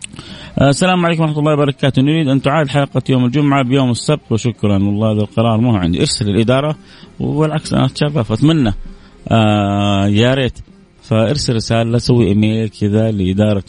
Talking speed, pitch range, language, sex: 150 wpm, 105-130 Hz, Arabic, male